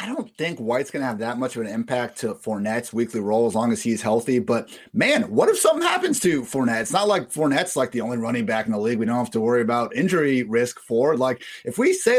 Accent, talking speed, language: American, 265 wpm, English